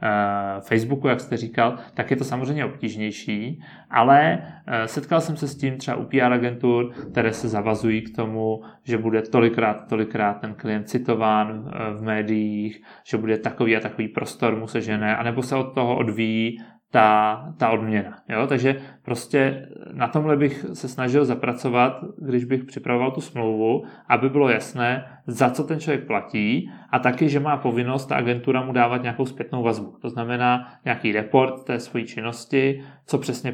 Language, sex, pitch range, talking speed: Czech, male, 110-130 Hz, 165 wpm